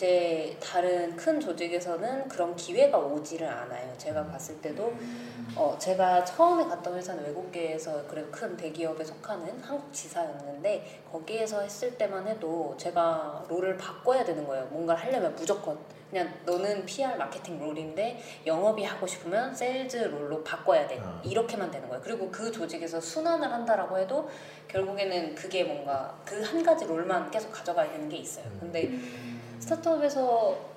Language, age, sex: Korean, 20-39, female